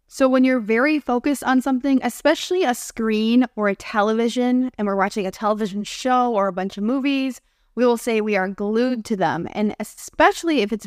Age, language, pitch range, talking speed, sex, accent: 20-39, English, 210-255 Hz, 200 wpm, female, American